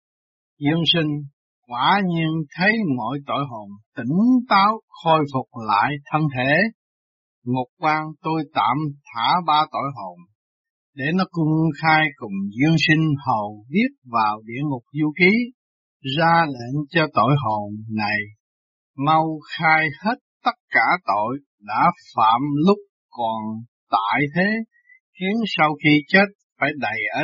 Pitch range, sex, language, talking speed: 130-165 Hz, male, Vietnamese, 135 wpm